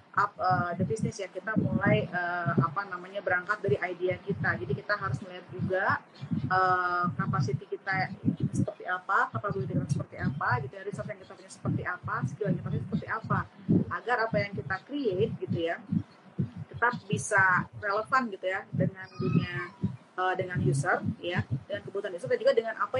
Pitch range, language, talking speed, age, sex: 170-220 Hz, Indonesian, 170 wpm, 30-49, female